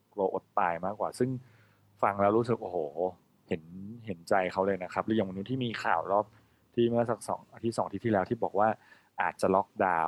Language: Thai